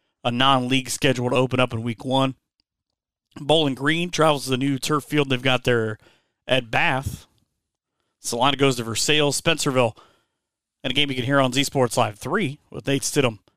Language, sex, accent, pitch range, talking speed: English, male, American, 120-145 Hz, 180 wpm